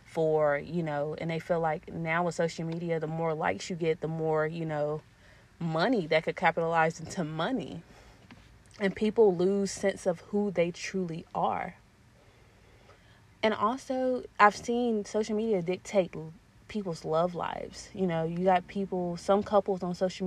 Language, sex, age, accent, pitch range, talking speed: English, female, 30-49, American, 155-185 Hz, 160 wpm